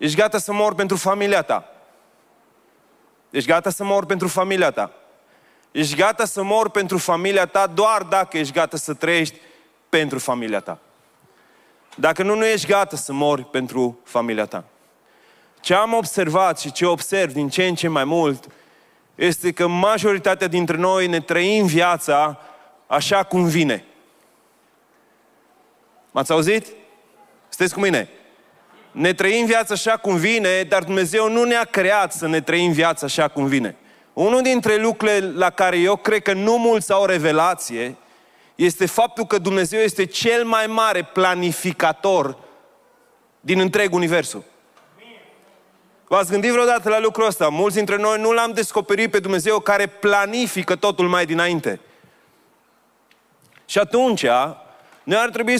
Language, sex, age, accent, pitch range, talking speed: Romanian, male, 30-49, native, 165-215 Hz, 145 wpm